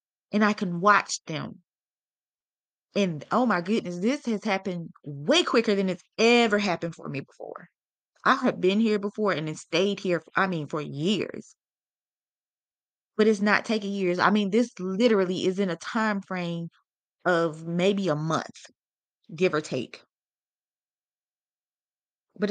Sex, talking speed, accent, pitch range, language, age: female, 145 wpm, American, 185-230 Hz, English, 20-39